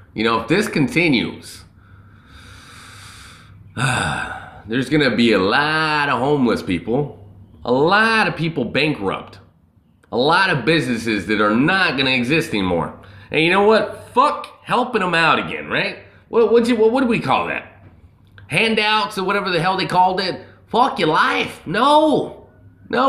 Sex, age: male, 30-49